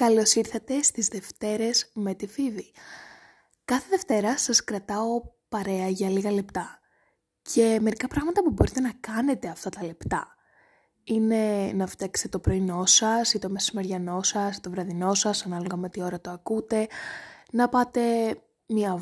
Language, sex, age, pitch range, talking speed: Greek, female, 20-39, 190-240 Hz, 150 wpm